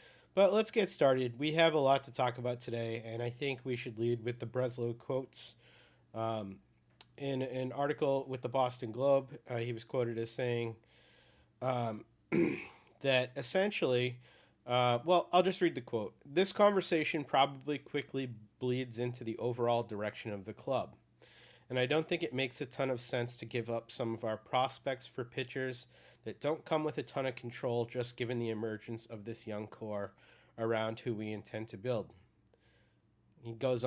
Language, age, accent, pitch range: English, 30-49, American, 115-135 Hz